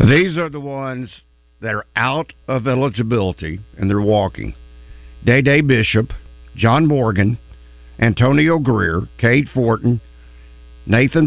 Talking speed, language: 110 wpm, English